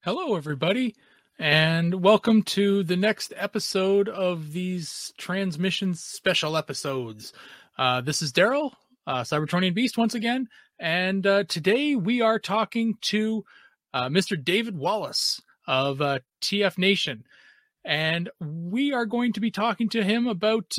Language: English